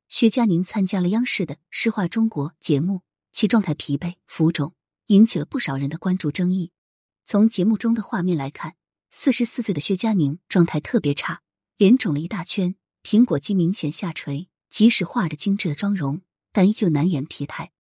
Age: 20-39